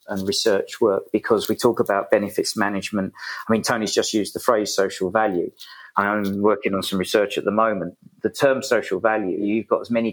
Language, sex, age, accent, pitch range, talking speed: English, male, 40-59, British, 100-120 Hz, 200 wpm